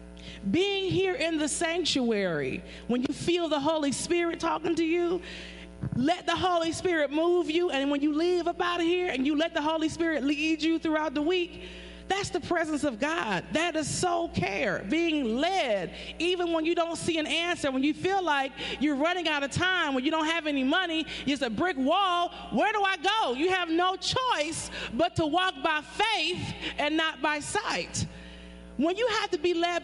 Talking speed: 200 wpm